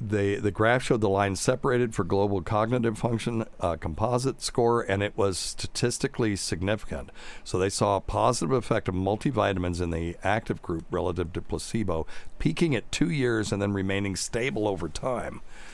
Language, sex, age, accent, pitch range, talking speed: English, male, 60-79, American, 95-115 Hz, 170 wpm